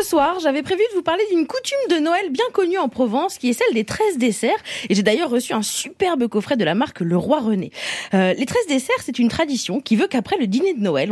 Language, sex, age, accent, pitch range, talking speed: French, female, 20-39, French, 220-330 Hz, 260 wpm